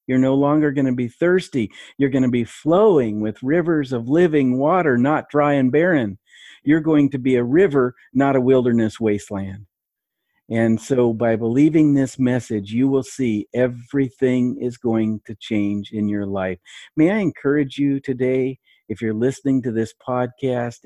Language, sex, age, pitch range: English, male, 50-69, 110-135 Hz